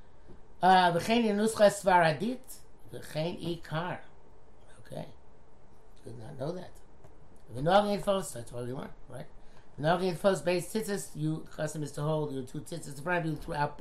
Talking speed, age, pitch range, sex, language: 160 wpm, 60-79, 145-200 Hz, male, English